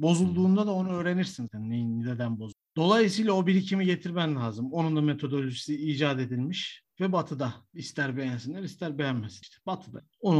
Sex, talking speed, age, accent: male, 145 wpm, 50-69, native